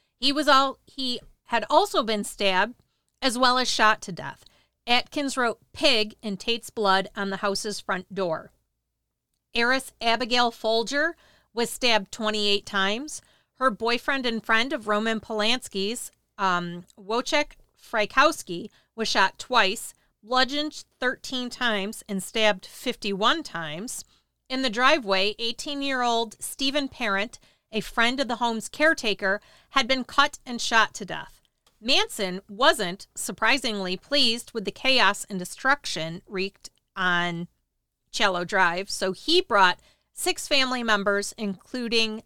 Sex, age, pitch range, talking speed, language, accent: female, 40-59, 200-255 Hz, 135 wpm, English, American